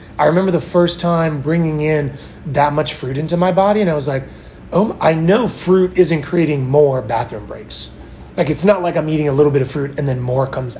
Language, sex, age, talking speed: English, male, 30-49, 230 wpm